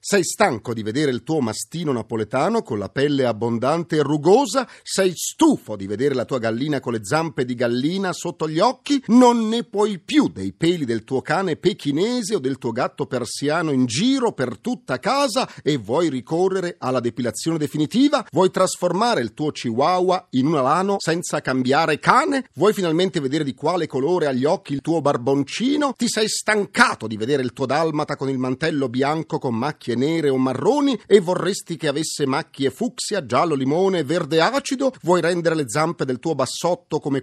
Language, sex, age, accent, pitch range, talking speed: Italian, male, 40-59, native, 135-210 Hz, 180 wpm